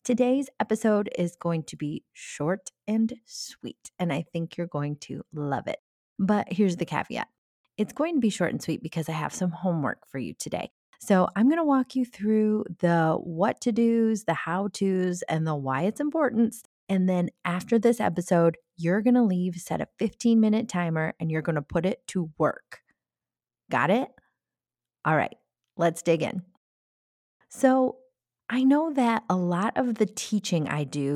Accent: American